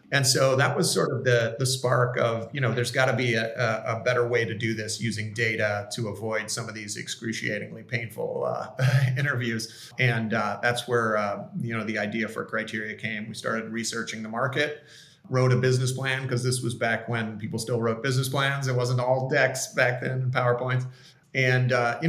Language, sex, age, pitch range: English, male, 40-59, 115-130 Hz